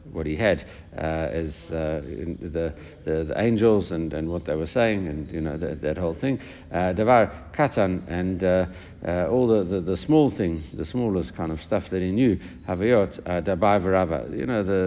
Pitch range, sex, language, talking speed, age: 80-95 Hz, male, English, 190 wpm, 60-79